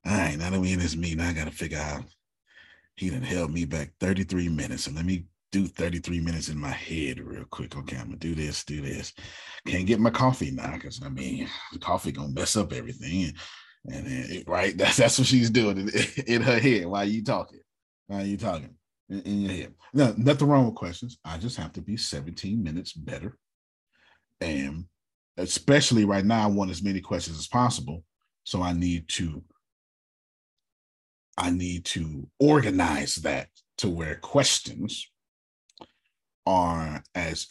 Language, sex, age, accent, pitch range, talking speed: English, male, 30-49, American, 80-110 Hz, 190 wpm